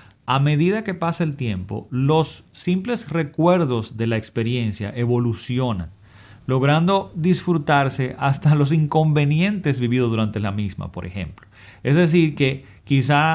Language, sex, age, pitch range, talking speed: Spanish, male, 30-49, 110-145 Hz, 125 wpm